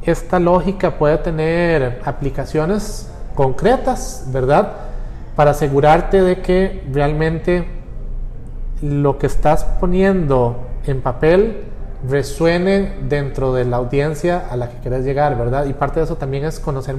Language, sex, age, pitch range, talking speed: Spanish, male, 30-49, 135-180 Hz, 125 wpm